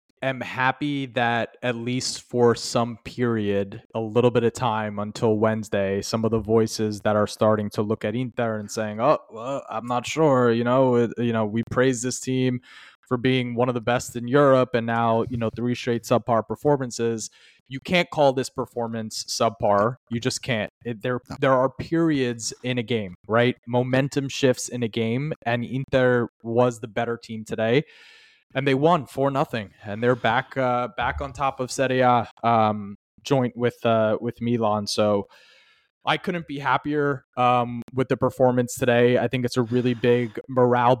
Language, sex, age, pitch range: English, male, 20-39, 115-130 Hz